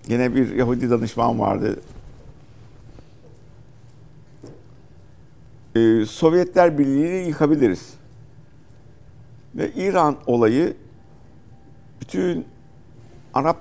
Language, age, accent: Turkish, 60-79, native